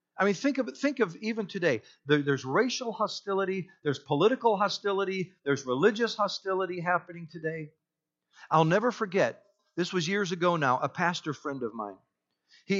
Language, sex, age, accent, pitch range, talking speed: English, male, 50-69, American, 155-210 Hz, 160 wpm